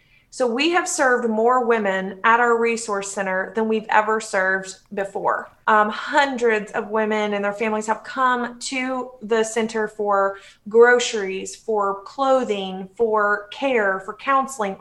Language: English